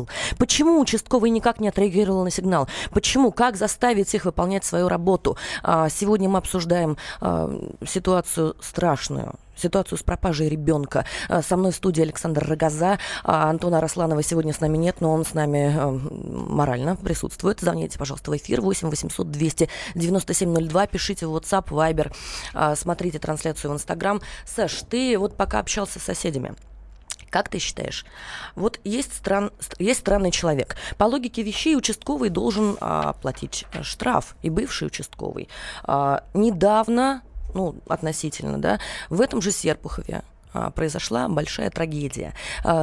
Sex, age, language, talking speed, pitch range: female, 20-39, Russian, 135 wpm, 155-200 Hz